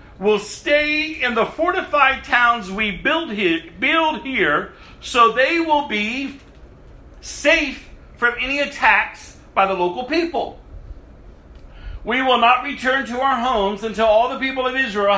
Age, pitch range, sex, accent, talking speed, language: 50-69, 180-250 Hz, male, American, 140 wpm, English